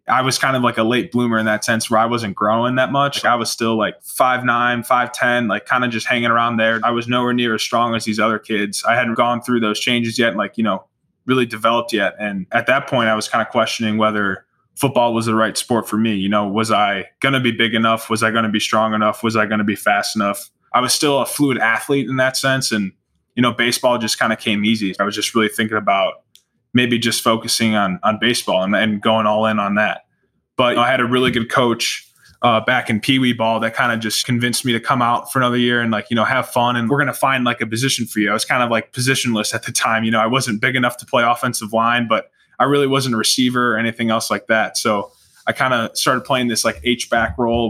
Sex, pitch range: male, 110-125 Hz